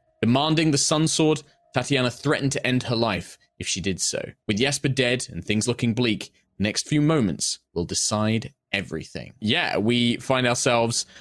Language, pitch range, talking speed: English, 105-140 Hz, 170 wpm